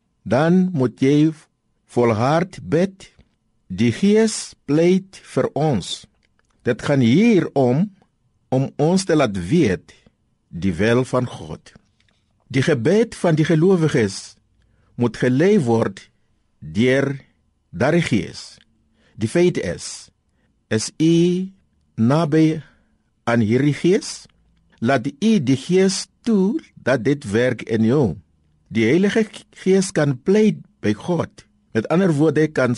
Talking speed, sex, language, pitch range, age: 115 wpm, male, Dutch, 115-175 Hz, 50-69